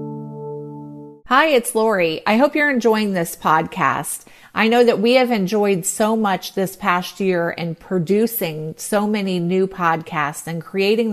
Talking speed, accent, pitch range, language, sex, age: 150 wpm, American, 170-215 Hz, English, female, 40-59